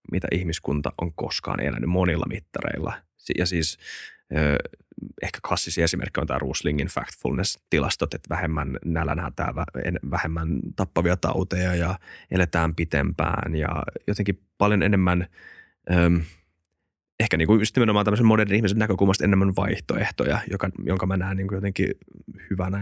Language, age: Finnish, 20-39